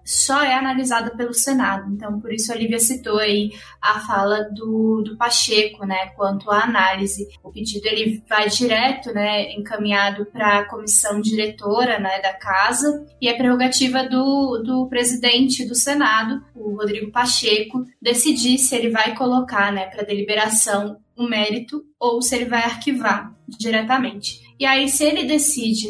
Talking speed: 160 wpm